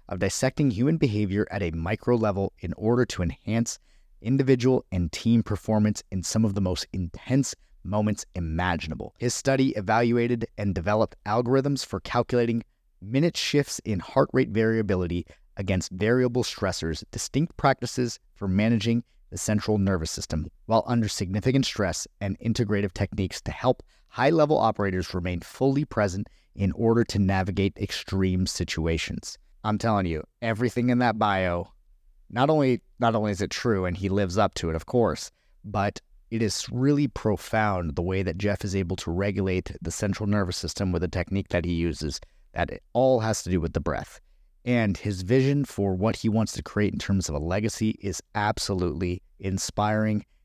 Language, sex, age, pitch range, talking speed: English, male, 30-49, 90-115 Hz, 170 wpm